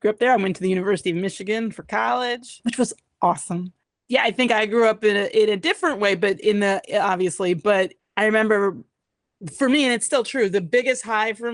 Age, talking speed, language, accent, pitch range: 30-49, 230 wpm, English, American, 175-215 Hz